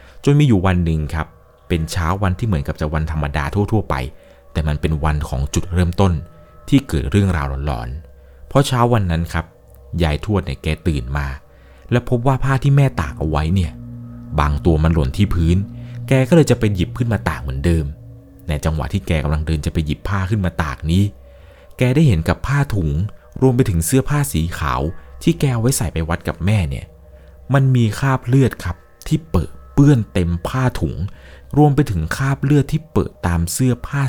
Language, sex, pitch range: Thai, male, 75-110 Hz